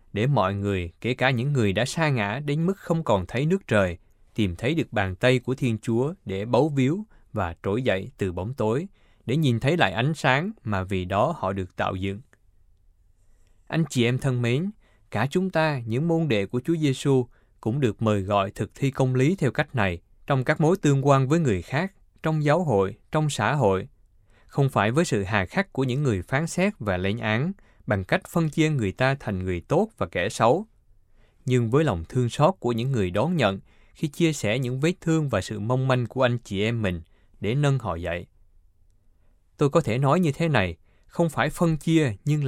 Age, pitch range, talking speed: 20-39, 100-145 Hz, 215 wpm